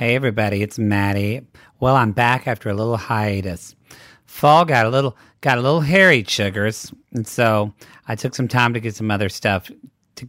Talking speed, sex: 185 wpm, male